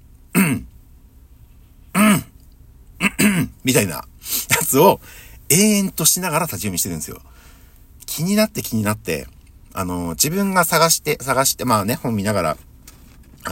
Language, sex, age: Japanese, male, 60-79